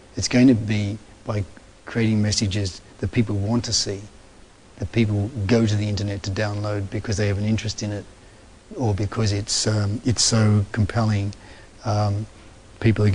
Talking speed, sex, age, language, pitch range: 170 wpm, male, 40-59, English, 100-110 Hz